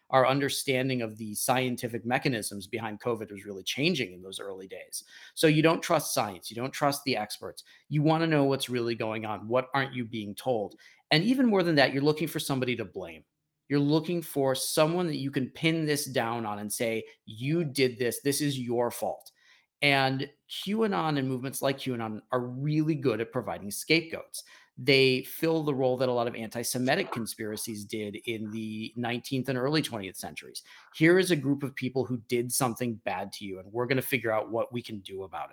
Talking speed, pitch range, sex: 205 wpm, 115-145 Hz, male